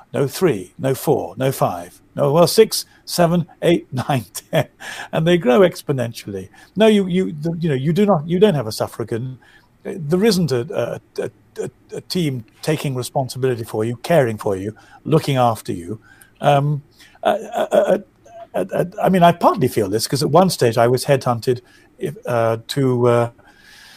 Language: English